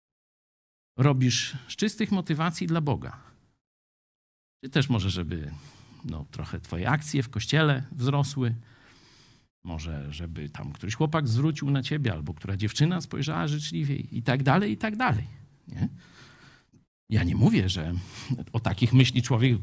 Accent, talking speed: native, 140 wpm